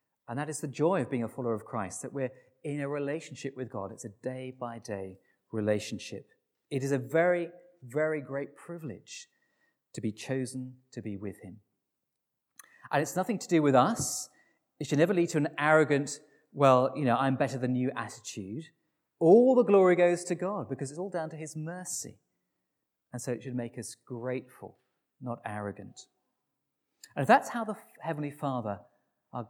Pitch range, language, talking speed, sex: 120-165 Hz, English, 180 wpm, male